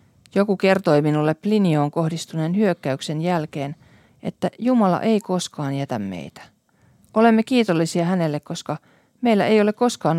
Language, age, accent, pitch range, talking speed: Finnish, 40-59, native, 155-205 Hz, 125 wpm